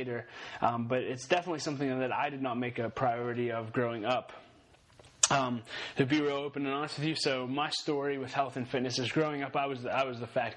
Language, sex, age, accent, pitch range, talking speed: English, male, 20-39, American, 130-155 Hz, 220 wpm